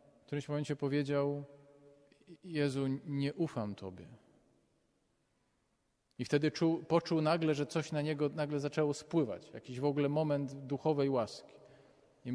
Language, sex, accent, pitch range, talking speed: Polish, male, native, 135-155 Hz, 130 wpm